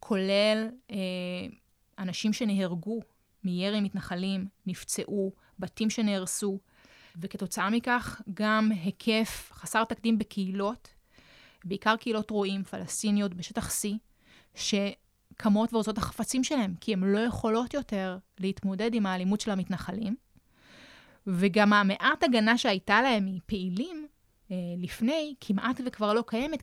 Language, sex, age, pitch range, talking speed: Hebrew, female, 20-39, 190-225 Hz, 105 wpm